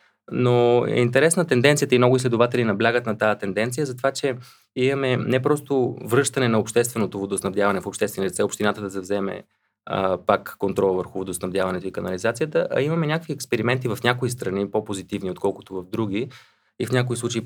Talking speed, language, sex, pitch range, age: 170 wpm, Bulgarian, male, 100-130 Hz, 20-39